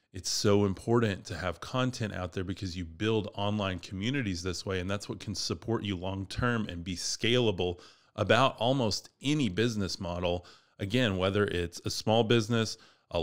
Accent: American